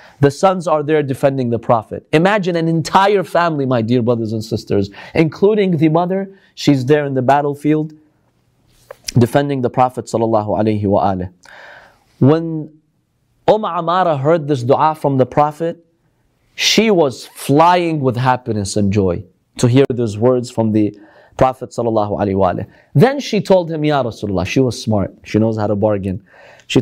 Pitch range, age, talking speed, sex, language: 115-155 Hz, 30-49, 145 wpm, male, English